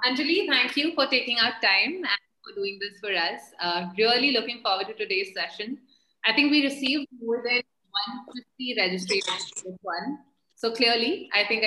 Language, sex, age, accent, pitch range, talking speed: English, female, 30-49, Indian, 195-255 Hz, 180 wpm